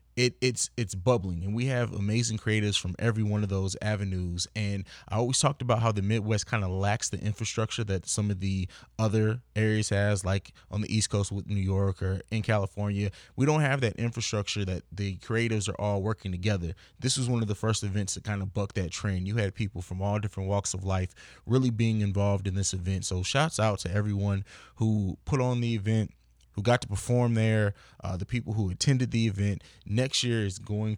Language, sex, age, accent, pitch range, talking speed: English, male, 20-39, American, 100-115 Hz, 215 wpm